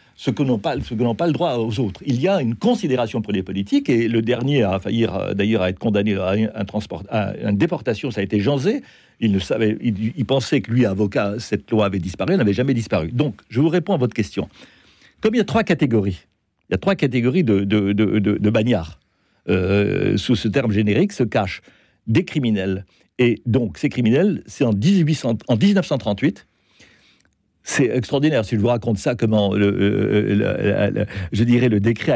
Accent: French